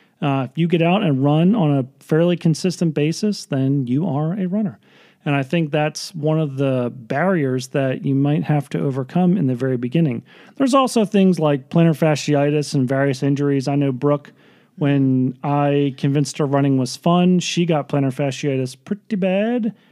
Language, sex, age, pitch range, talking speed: English, male, 40-59, 130-165 Hz, 180 wpm